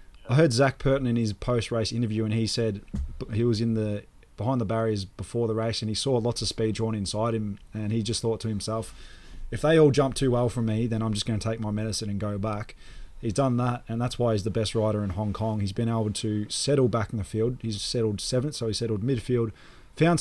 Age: 20-39